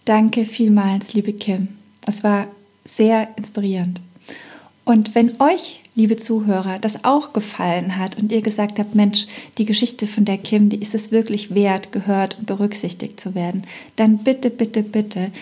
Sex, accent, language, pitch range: female, German, German, 205-245 Hz